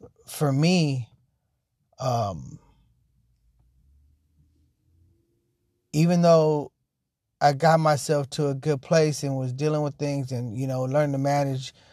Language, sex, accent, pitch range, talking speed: English, male, American, 125-150 Hz, 115 wpm